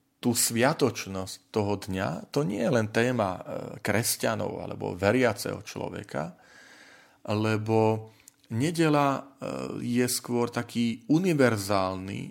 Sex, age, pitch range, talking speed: male, 40-59, 95-120 Hz, 95 wpm